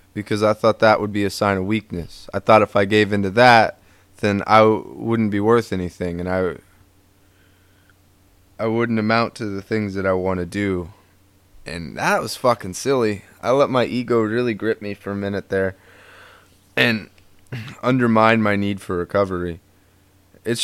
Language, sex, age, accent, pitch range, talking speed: English, male, 20-39, American, 95-110 Hz, 175 wpm